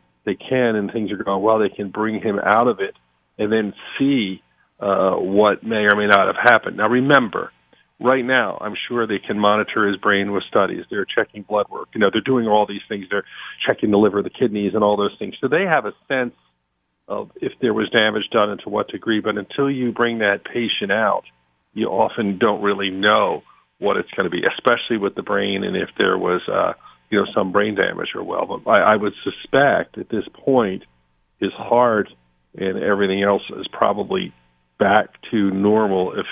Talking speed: 205 wpm